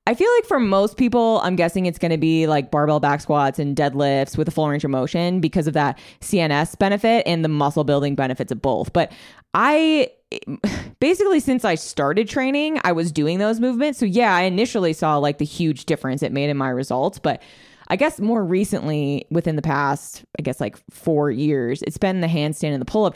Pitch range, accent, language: 145-195 Hz, American, English